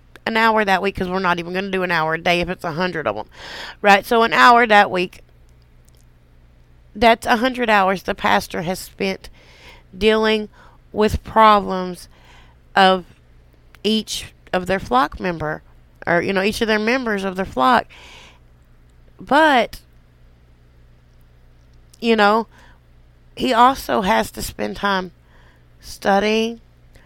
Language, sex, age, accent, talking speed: English, female, 30-49, American, 140 wpm